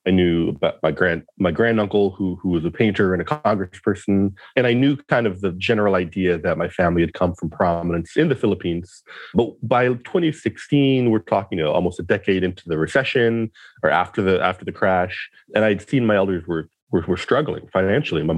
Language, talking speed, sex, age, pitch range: English, 200 wpm, male, 30-49, 90-115 Hz